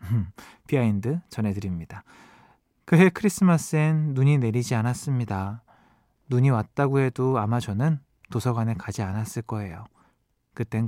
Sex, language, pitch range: male, Korean, 115-180 Hz